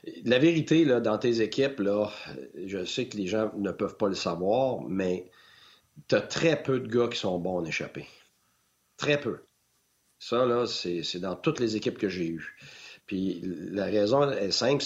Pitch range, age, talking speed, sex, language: 100-130 Hz, 50-69, 190 wpm, male, French